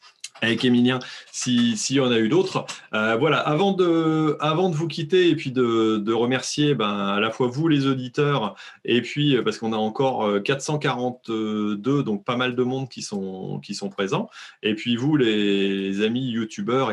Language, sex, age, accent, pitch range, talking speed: French, male, 30-49, French, 105-135 Hz, 190 wpm